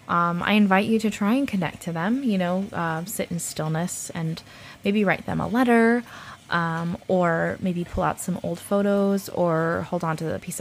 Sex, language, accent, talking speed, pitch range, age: female, English, American, 205 wpm, 160-190 Hz, 20-39